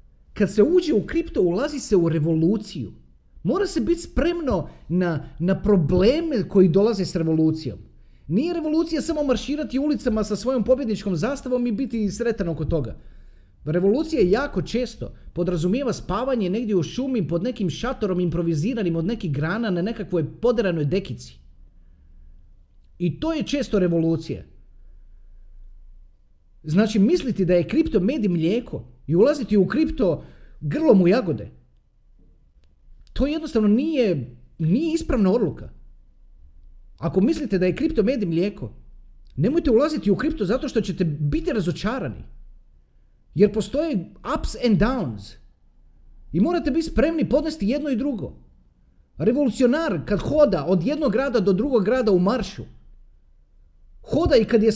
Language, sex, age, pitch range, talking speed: Croatian, male, 30-49, 145-245 Hz, 135 wpm